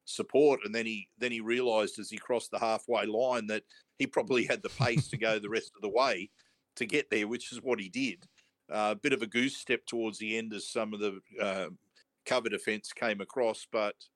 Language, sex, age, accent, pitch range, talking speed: English, male, 50-69, Australian, 100-120 Hz, 230 wpm